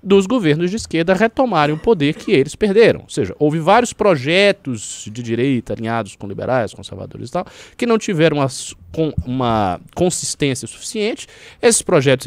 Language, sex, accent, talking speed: Portuguese, male, Brazilian, 160 wpm